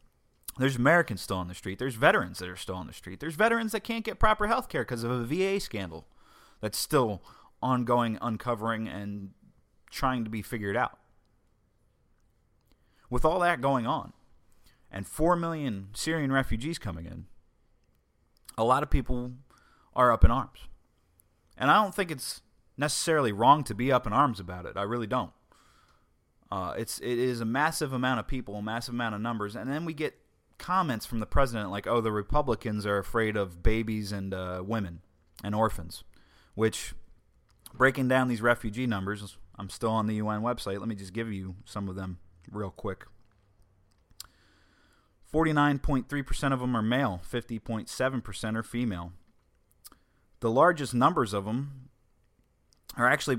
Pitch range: 100-130 Hz